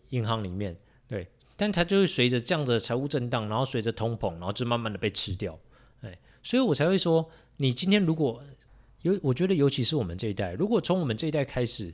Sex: male